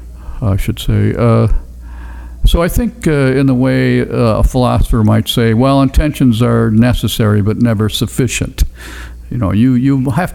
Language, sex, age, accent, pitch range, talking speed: English, male, 50-69, American, 100-120 Hz, 160 wpm